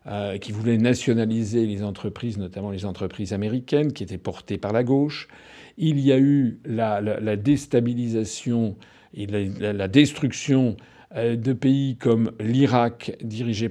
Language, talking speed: French, 145 wpm